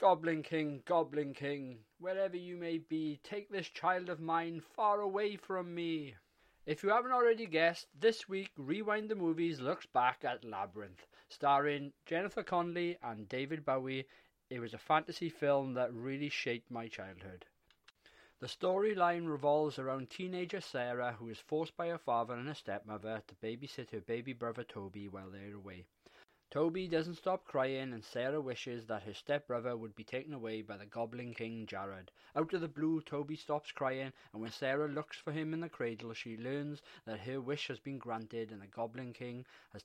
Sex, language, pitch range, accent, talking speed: male, English, 115-160 Hz, British, 180 wpm